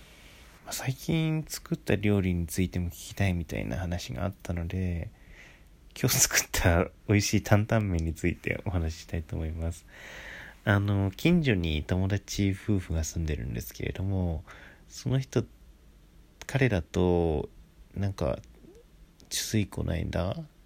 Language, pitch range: Japanese, 85-110 Hz